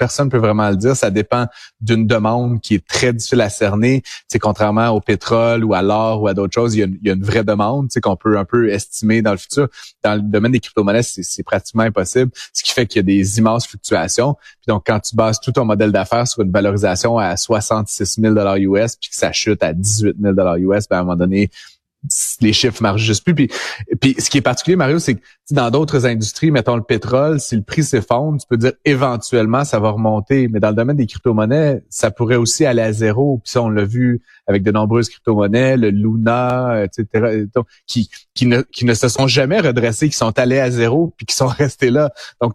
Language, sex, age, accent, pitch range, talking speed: French, male, 30-49, Canadian, 105-130 Hz, 235 wpm